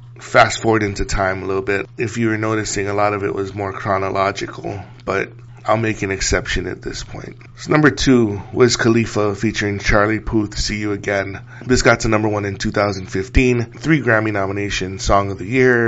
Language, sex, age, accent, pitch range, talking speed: English, male, 20-39, American, 100-120 Hz, 195 wpm